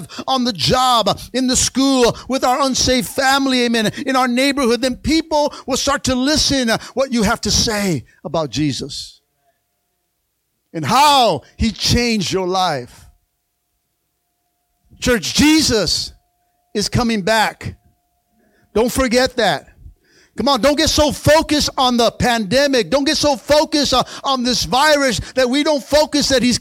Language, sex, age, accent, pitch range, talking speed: English, male, 50-69, American, 230-285 Hz, 145 wpm